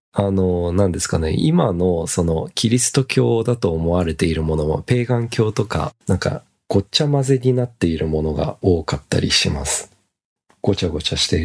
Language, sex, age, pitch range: Japanese, male, 40-59, 85-120 Hz